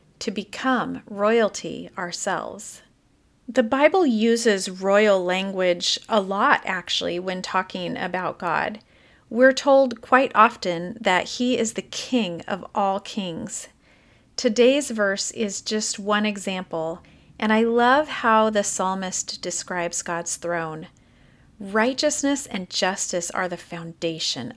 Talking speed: 120 wpm